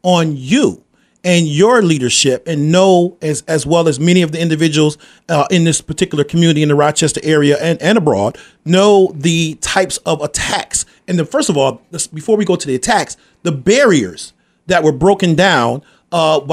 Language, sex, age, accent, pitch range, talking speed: English, male, 40-59, American, 155-190 Hz, 180 wpm